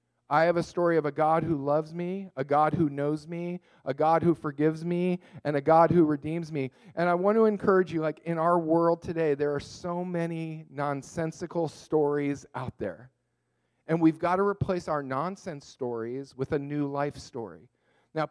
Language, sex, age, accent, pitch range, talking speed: English, male, 40-59, American, 140-170 Hz, 195 wpm